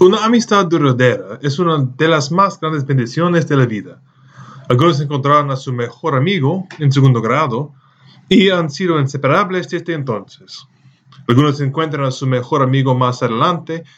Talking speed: 155 wpm